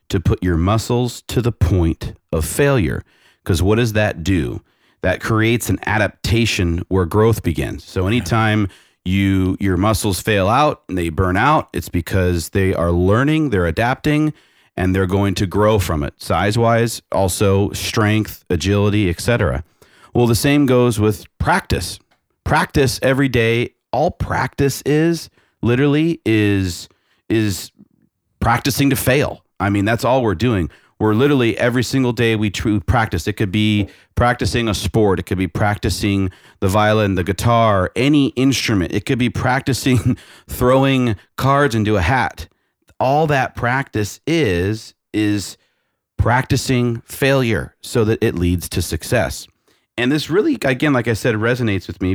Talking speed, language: 150 wpm, English